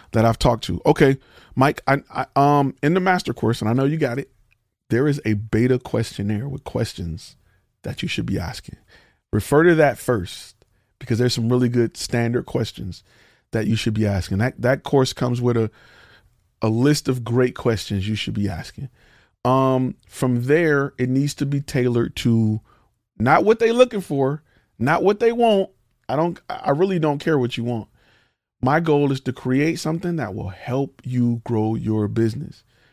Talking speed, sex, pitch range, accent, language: 185 wpm, male, 115-150 Hz, American, English